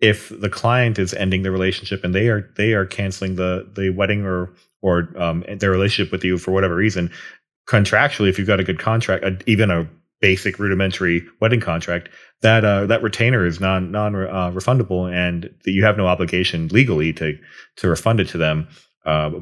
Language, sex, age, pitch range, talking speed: English, male, 30-49, 90-105 Hz, 190 wpm